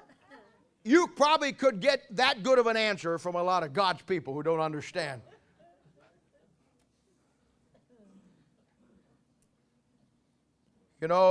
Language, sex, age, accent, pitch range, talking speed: English, male, 40-59, American, 155-210 Hz, 105 wpm